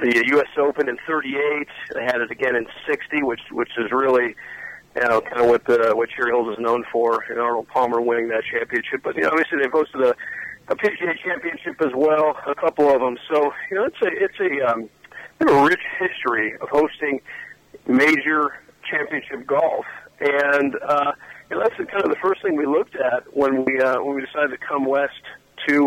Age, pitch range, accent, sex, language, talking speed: 50-69, 125-155 Hz, American, male, English, 200 wpm